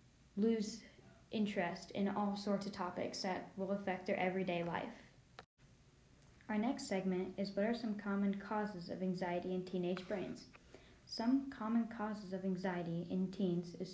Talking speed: 150 wpm